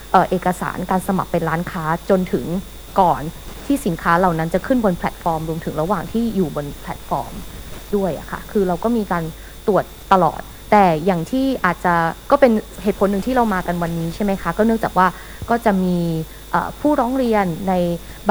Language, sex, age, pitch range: Thai, female, 20-39, 175-220 Hz